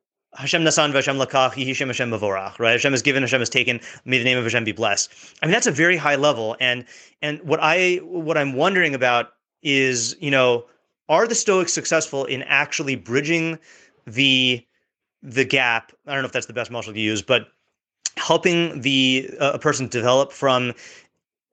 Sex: male